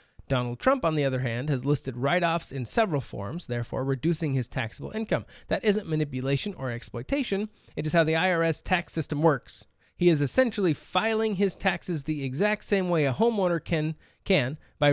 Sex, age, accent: male, 30-49, American